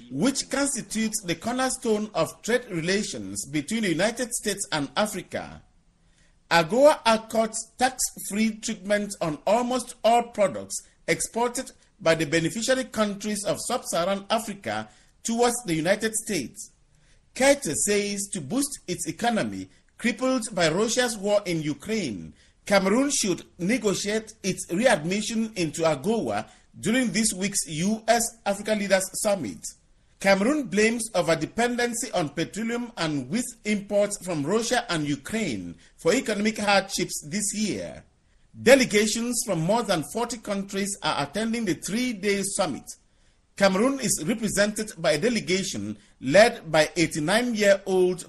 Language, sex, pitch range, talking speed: English, male, 165-230 Hz, 120 wpm